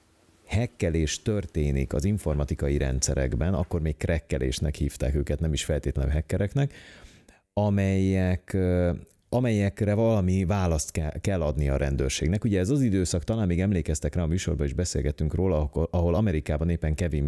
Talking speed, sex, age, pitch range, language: 135 wpm, male, 30-49, 70-90 Hz, Hungarian